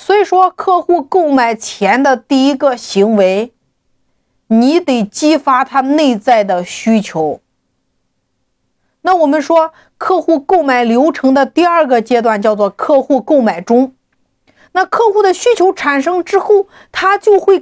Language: Chinese